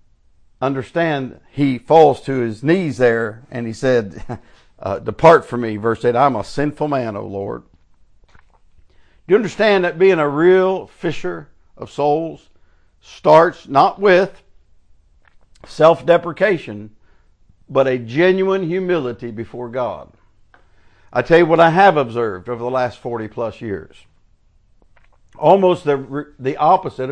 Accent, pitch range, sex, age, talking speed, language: American, 110-155 Hz, male, 60-79, 130 wpm, English